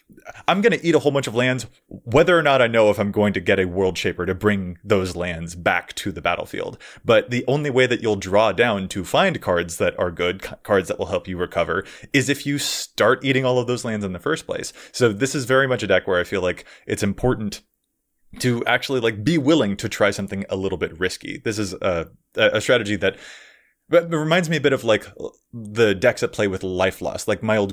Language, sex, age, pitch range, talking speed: English, male, 20-39, 95-125 Hz, 240 wpm